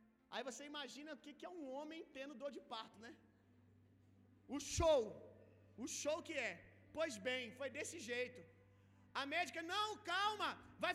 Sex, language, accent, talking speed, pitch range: male, Gujarati, Brazilian, 160 wpm, 250-330 Hz